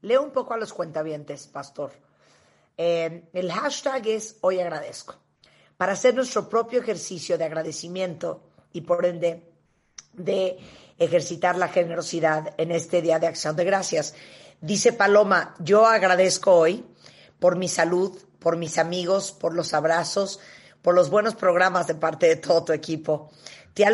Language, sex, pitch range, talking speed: Spanish, female, 165-195 Hz, 150 wpm